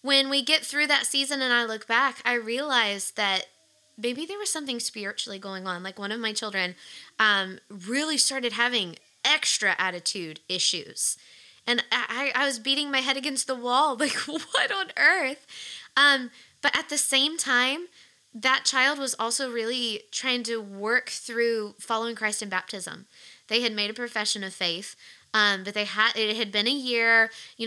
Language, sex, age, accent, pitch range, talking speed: English, female, 20-39, American, 210-265 Hz, 180 wpm